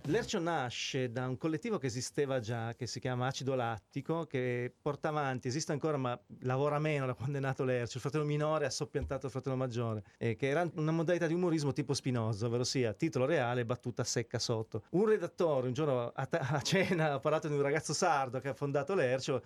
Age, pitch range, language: 30-49, 125-160 Hz, Italian